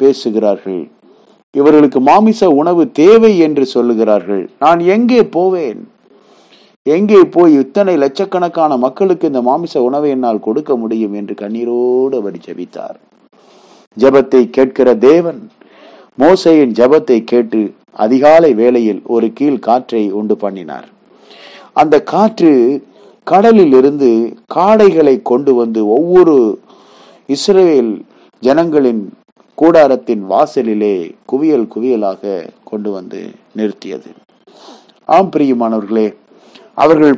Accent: native